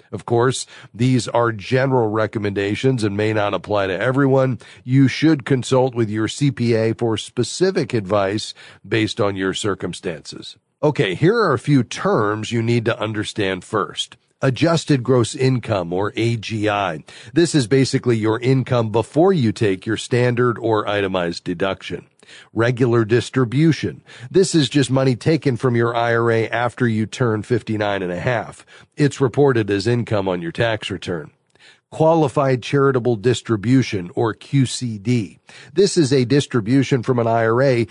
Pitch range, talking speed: 110-135 Hz, 145 wpm